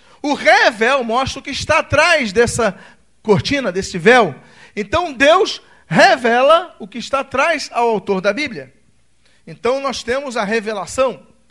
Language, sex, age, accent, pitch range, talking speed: Portuguese, male, 40-59, Brazilian, 225-290 Hz, 140 wpm